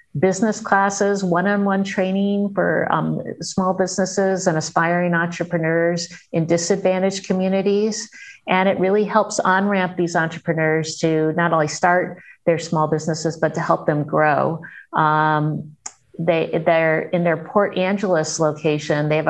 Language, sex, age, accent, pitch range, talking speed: English, female, 50-69, American, 155-185 Hz, 135 wpm